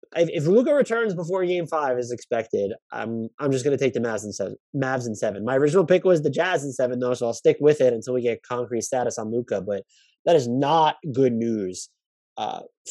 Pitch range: 105-145 Hz